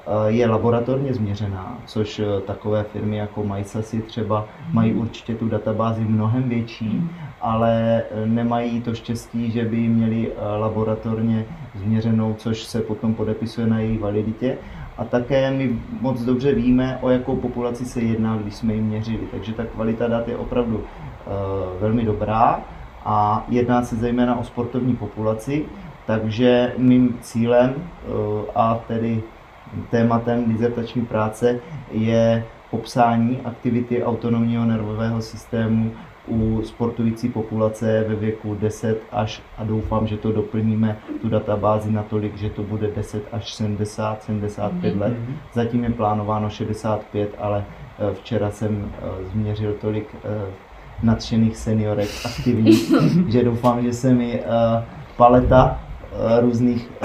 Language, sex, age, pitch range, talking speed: Czech, male, 30-49, 110-120 Hz, 125 wpm